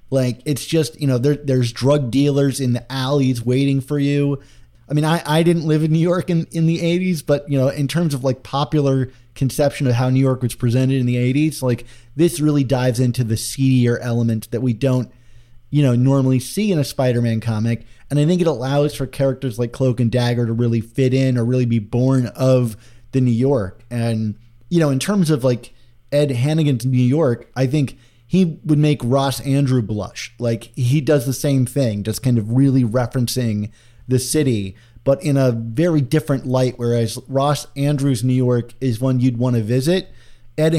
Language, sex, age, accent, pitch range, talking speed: English, male, 30-49, American, 120-145 Hz, 205 wpm